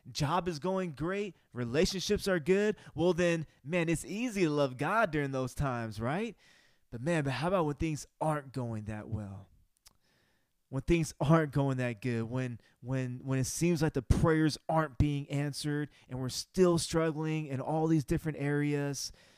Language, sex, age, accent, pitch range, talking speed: English, male, 20-39, American, 130-165 Hz, 175 wpm